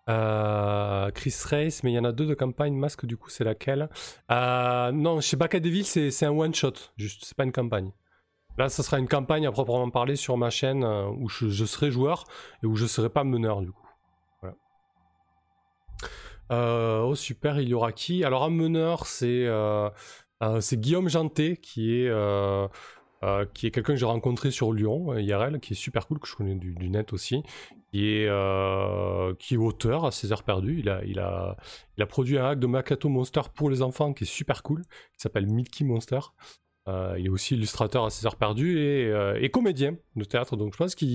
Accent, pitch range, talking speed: French, 105-140 Hz, 215 wpm